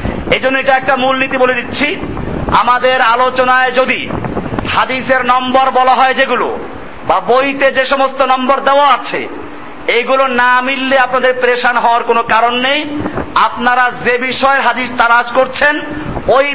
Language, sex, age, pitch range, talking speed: Bengali, male, 50-69, 235-270 Hz, 140 wpm